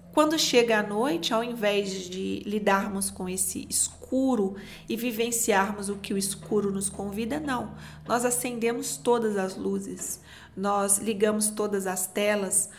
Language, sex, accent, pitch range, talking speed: Portuguese, female, Brazilian, 200-265 Hz, 140 wpm